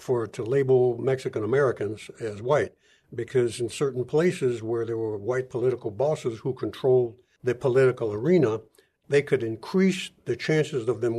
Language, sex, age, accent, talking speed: English, male, 60-79, American, 150 wpm